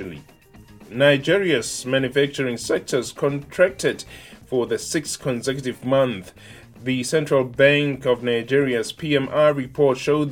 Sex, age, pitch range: male, 20-39, 125-150 Hz